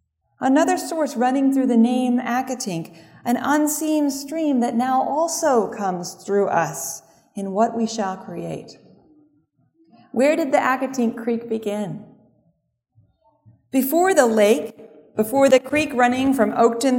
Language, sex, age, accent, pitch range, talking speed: English, female, 40-59, American, 205-260 Hz, 125 wpm